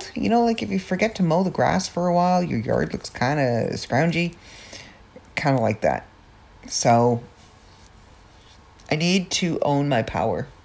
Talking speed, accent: 170 wpm, American